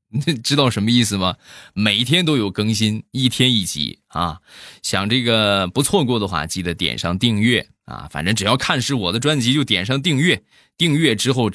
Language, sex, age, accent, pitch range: Chinese, male, 20-39, native, 90-135 Hz